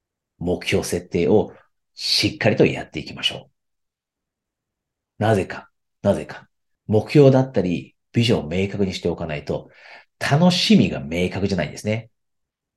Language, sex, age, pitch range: Japanese, male, 40-59, 90-135 Hz